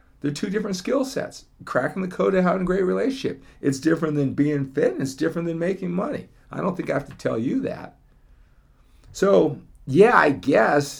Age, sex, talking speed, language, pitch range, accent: 50-69, male, 200 wpm, English, 105-145 Hz, American